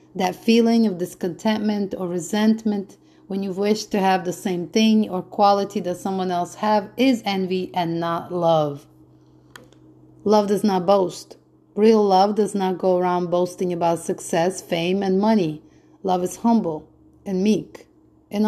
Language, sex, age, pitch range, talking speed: English, female, 30-49, 175-215 Hz, 155 wpm